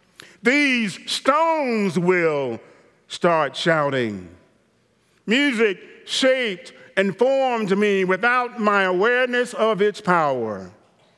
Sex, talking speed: male, 85 wpm